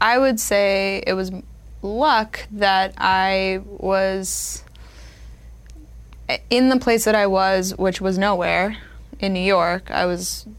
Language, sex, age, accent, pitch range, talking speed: English, female, 20-39, American, 165-190 Hz, 130 wpm